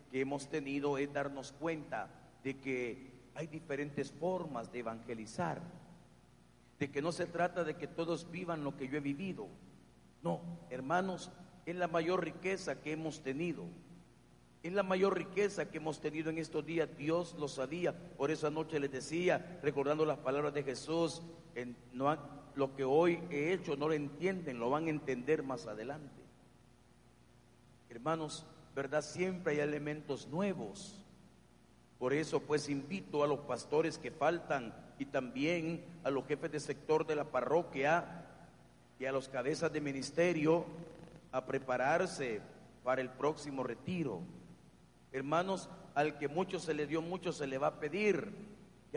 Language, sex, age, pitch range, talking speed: Spanish, male, 50-69, 135-170 Hz, 150 wpm